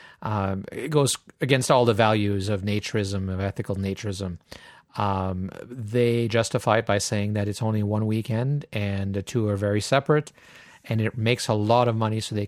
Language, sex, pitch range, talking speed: English, male, 105-125 Hz, 185 wpm